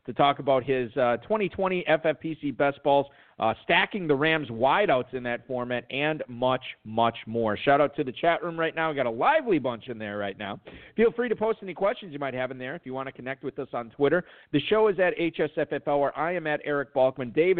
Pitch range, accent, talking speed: 125-155 Hz, American, 240 wpm